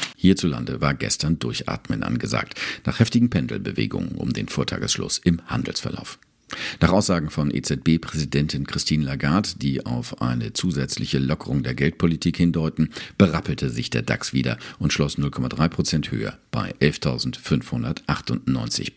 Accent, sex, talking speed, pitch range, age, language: German, male, 120 wpm, 65-85 Hz, 50-69, German